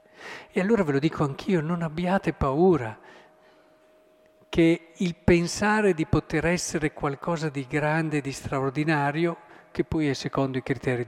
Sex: male